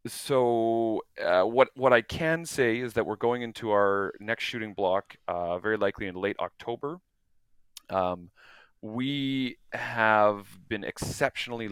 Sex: male